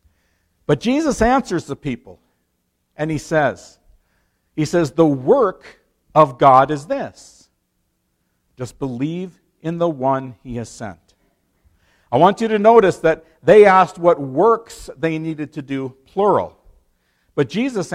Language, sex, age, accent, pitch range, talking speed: English, male, 50-69, American, 135-225 Hz, 135 wpm